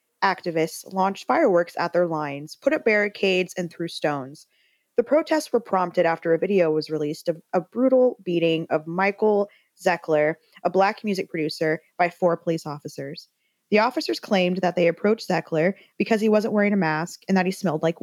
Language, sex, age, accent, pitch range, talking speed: English, female, 20-39, American, 165-215 Hz, 180 wpm